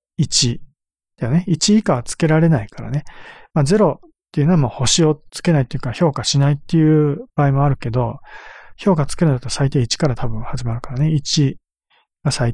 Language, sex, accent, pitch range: Japanese, male, native, 125-170 Hz